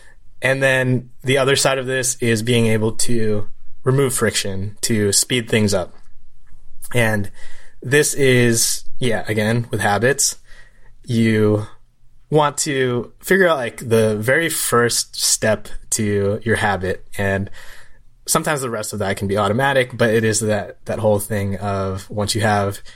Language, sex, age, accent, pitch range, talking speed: English, male, 20-39, American, 105-125 Hz, 150 wpm